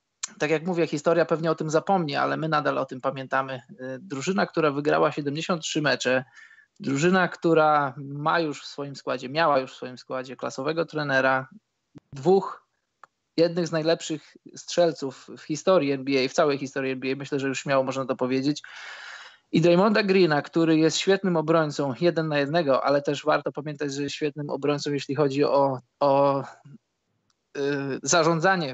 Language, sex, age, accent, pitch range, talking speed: Polish, male, 20-39, native, 140-165 Hz, 155 wpm